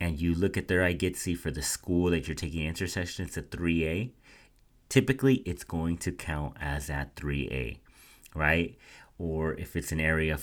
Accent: American